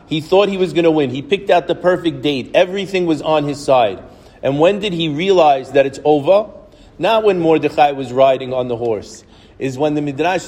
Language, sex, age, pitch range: English, male, 40-59, 140-175 Hz